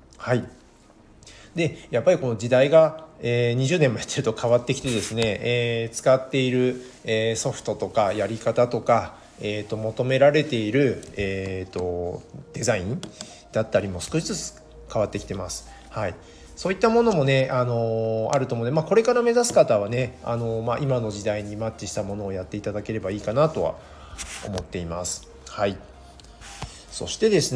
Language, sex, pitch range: Japanese, male, 100-140 Hz